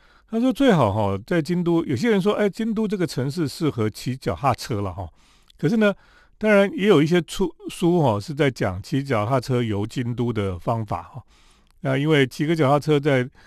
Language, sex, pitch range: Chinese, male, 110-170 Hz